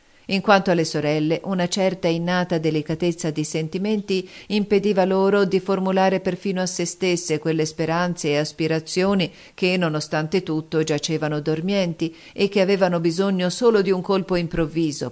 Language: Italian